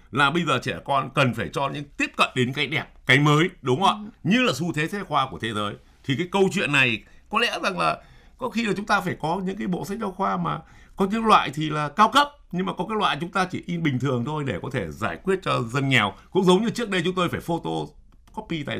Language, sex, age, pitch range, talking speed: Vietnamese, male, 60-79, 125-195 Hz, 285 wpm